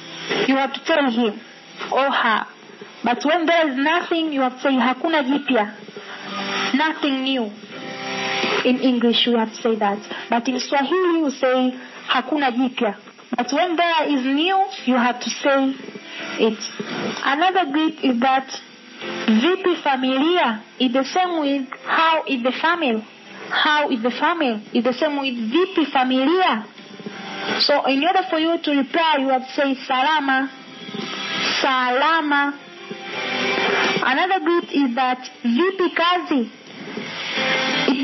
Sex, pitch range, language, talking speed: female, 245-315 Hz, English, 140 wpm